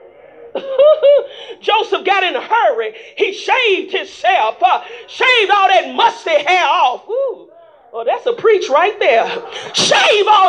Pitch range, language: 330-465 Hz, English